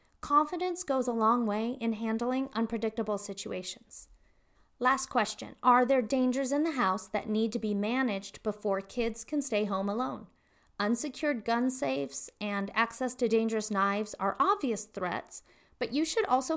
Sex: female